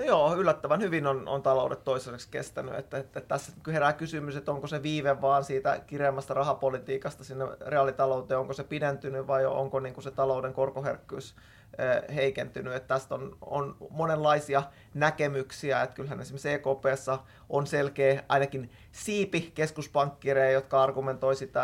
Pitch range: 130-145 Hz